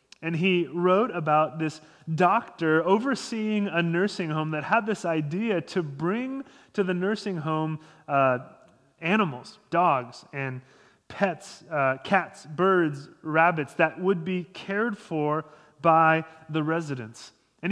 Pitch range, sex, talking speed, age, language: 150-195 Hz, male, 130 wpm, 30-49, English